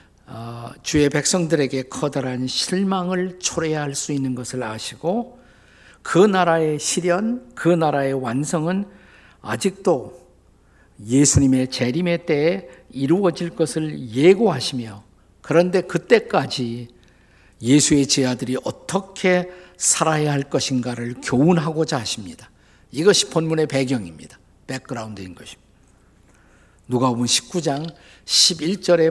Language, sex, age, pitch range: Korean, male, 50-69, 125-170 Hz